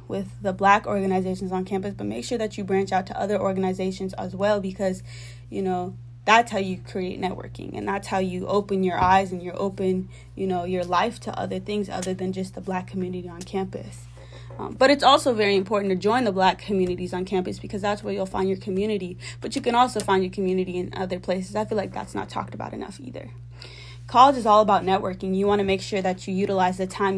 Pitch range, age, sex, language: 180-205 Hz, 20-39, female, English